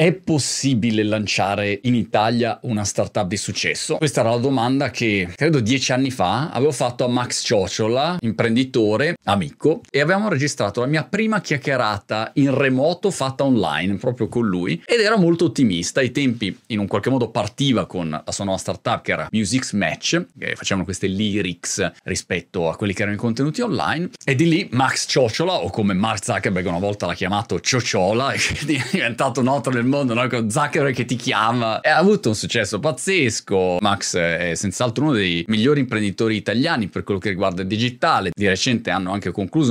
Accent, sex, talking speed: native, male, 180 wpm